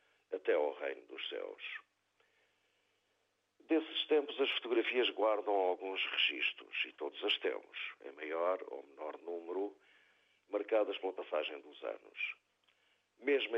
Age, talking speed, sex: 50-69, 120 wpm, male